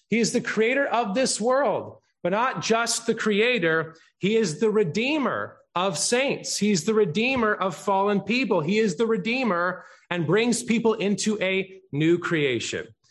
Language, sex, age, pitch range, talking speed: English, male, 30-49, 175-225 Hz, 160 wpm